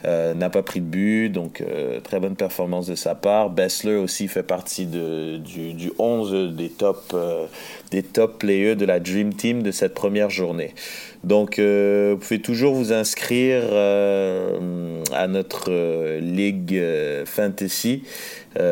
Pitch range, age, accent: 90-110 Hz, 30-49, French